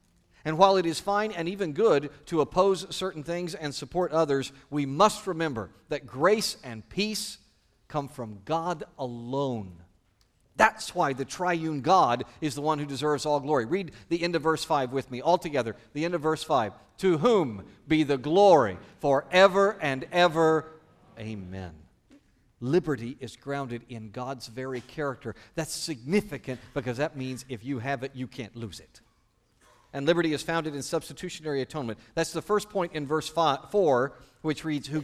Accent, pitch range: American, 125-170 Hz